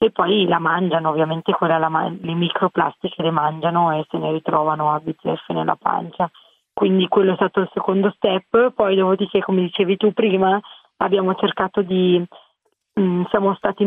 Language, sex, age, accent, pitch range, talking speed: Italian, female, 30-49, native, 170-195 Hz, 165 wpm